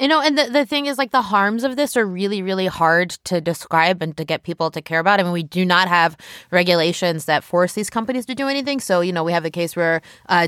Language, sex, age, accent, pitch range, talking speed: English, female, 20-39, American, 165-205 Hz, 275 wpm